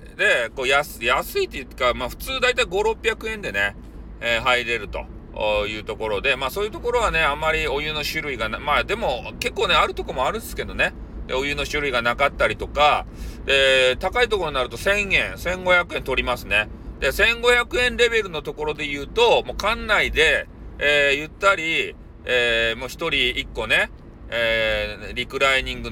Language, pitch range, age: Japanese, 115-165 Hz, 40-59